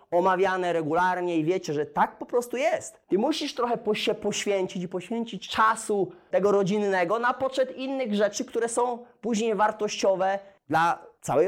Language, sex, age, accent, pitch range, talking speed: Polish, male, 30-49, native, 160-210 Hz, 150 wpm